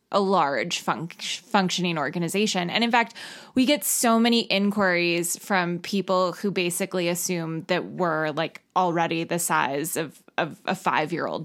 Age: 20-39